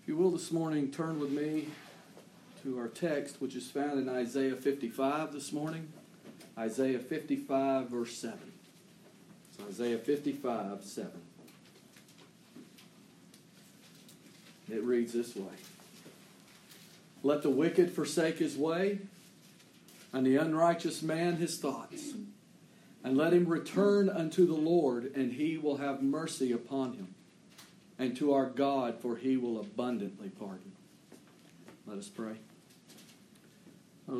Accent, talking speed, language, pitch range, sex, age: American, 125 wpm, English, 125-160 Hz, male, 50-69